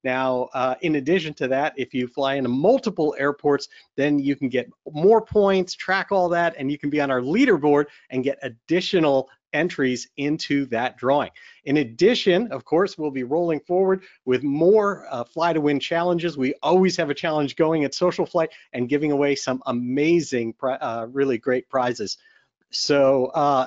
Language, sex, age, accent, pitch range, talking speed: English, male, 40-59, American, 130-170 Hz, 175 wpm